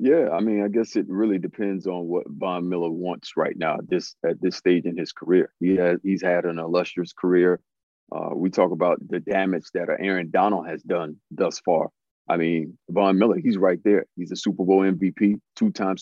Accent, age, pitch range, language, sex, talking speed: American, 40-59, 90-110 Hz, English, male, 205 wpm